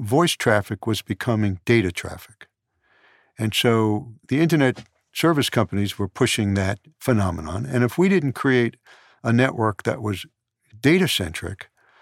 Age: 60-79